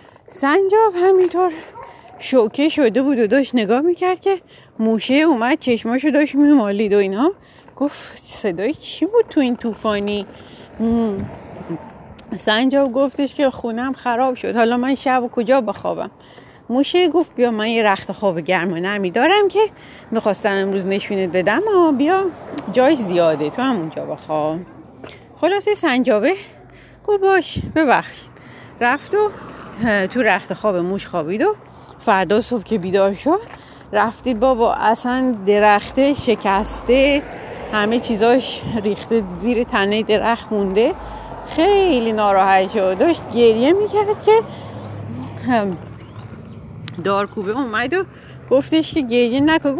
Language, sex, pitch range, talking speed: Persian, female, 210-305 Hz, 120 wpm